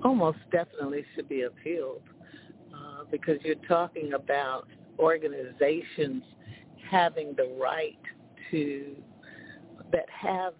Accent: American